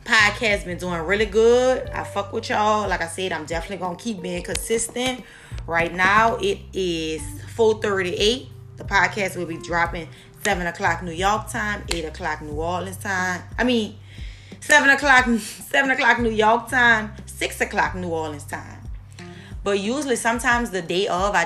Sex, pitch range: female, 145-215 Hz